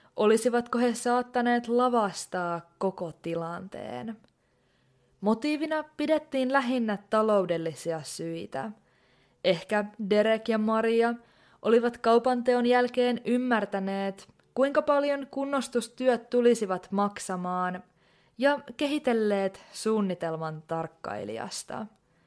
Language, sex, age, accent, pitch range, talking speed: Finnish, female, 20-39, native, 190-245 Hz, 75 wpm